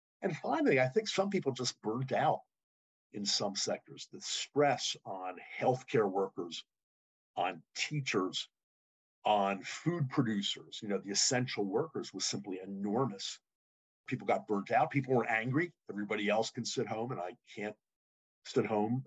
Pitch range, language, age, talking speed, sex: 100-135 Hz, English, 50-69, 150 wpm, male